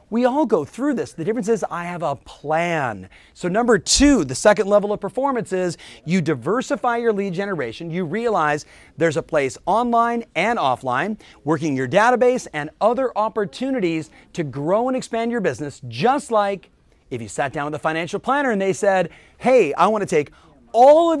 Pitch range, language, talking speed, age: 160-235 Hz, English, 185 wpm, 30-49